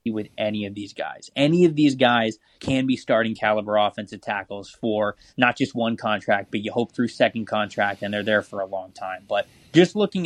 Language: English